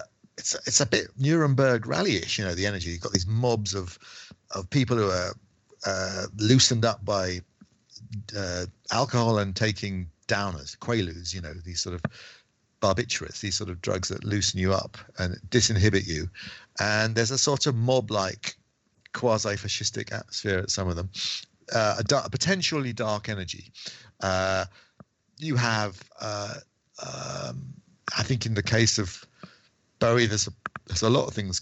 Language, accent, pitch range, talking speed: English, British, 95-120 Hz, 160 wpm